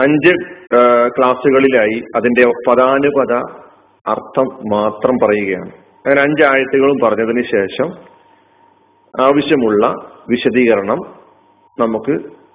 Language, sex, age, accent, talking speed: Malayalam, male, 40-59, native, 65 wpm